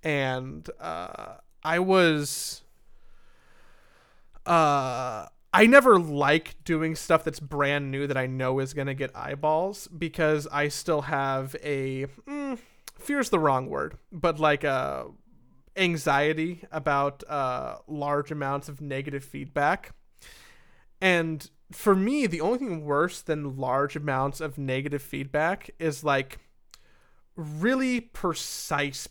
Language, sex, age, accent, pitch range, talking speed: English, male, 30-49, American, 140-165 Hz, 120 wpm